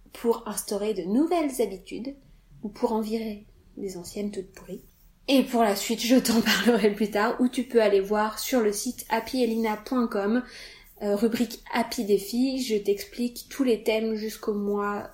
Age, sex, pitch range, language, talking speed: 20-39, female, 200-240 Hz, French, 165 wpm